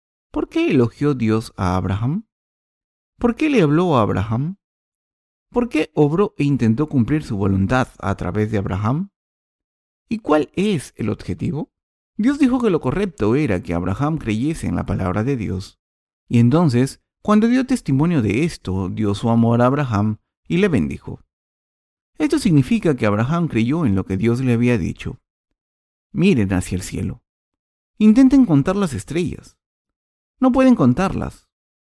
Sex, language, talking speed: male, Spanish, 155 wpm